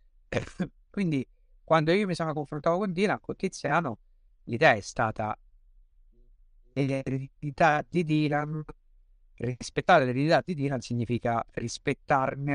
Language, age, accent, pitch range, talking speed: Italian, 50-69, native, 115-150 Hz, 105 wpm